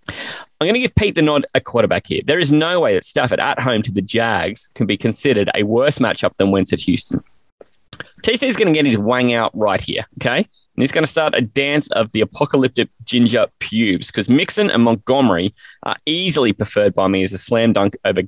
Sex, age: male, 20-39